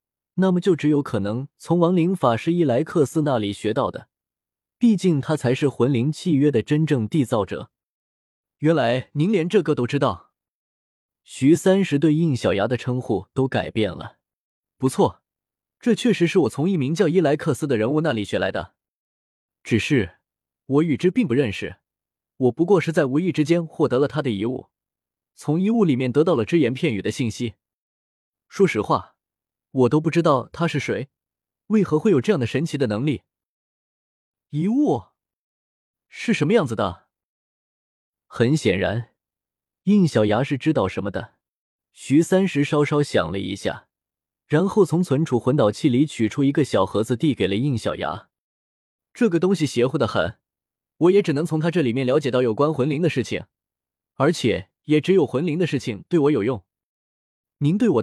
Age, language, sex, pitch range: 20-39, Chinese, male, 120-170 Hz